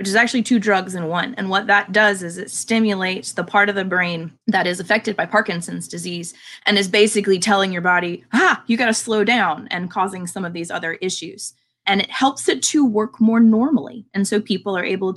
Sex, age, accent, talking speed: female, 20-39, American, 225 wpm